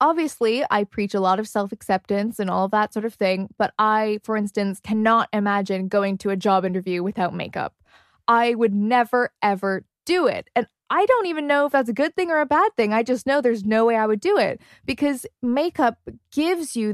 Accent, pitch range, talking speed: American, 205-275 Hz, 215 wpm